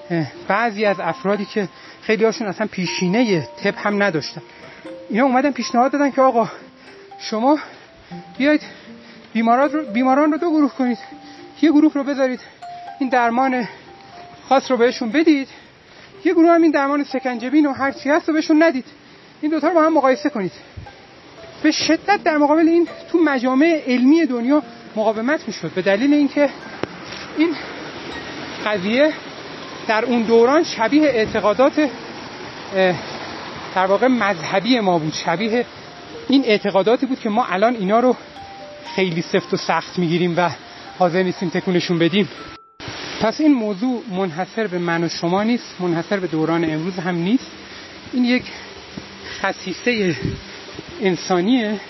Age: 40-59